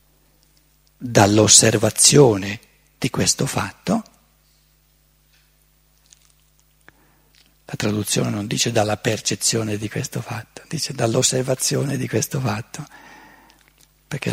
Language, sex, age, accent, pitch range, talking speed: Italian, male, 50-69, native, 115-165 Hz, 80 wpm